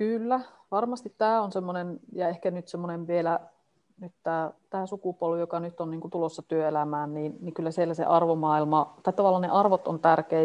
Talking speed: 170 wpm